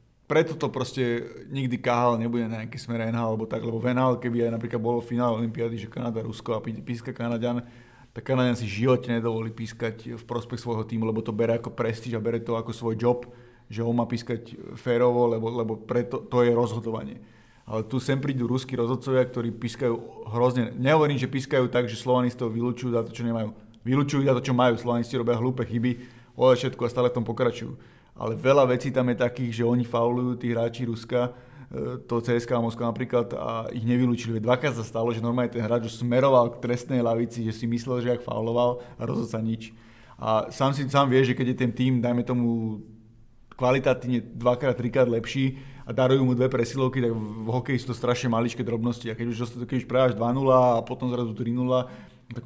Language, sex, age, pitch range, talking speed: Slovak, male, 30-49, 115-125 Hz, 205 wpm